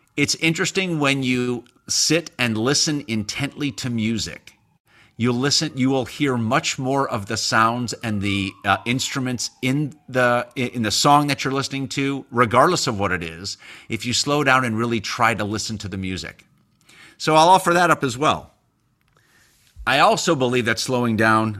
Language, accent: English, American